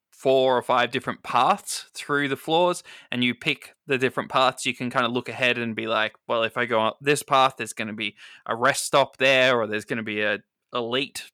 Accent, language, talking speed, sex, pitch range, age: Australian, English, 240 wpm, male, 115-140 Hz, 20-39